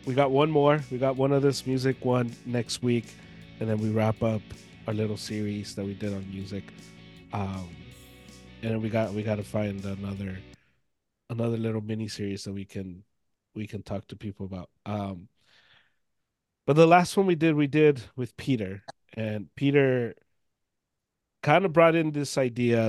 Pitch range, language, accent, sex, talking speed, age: 105-135 Hz, English, American, male, 180 wpm, 30-49